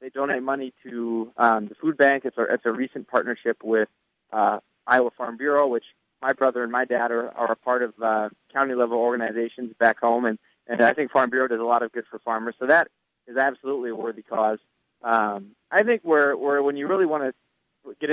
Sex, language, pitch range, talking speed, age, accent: male, English, 110-135 Hz, 220 wpm, 30-49, American